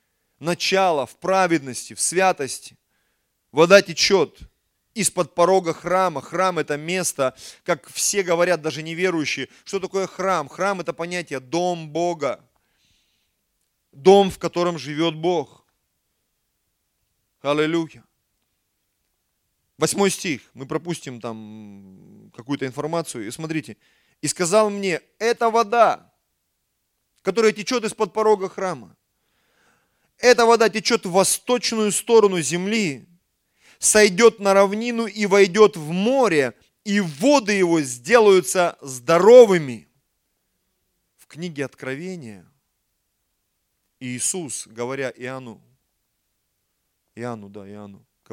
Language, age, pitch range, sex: Russian, 30-49, 120-190 Hz, male